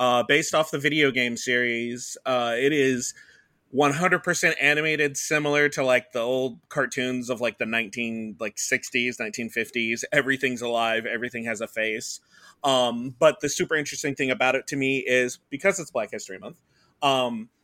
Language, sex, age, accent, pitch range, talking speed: English, male, 30-49, American, 120-145 Hz, 165 wpm